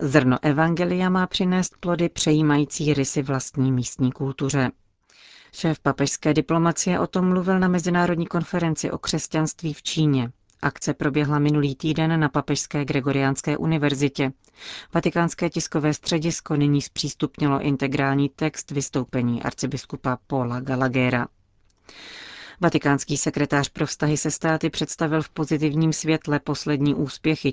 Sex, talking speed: female, 120 wpm